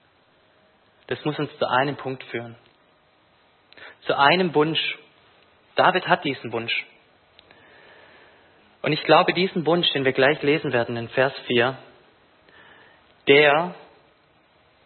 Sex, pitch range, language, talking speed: male, 125-175 Hz, German, 115 wpm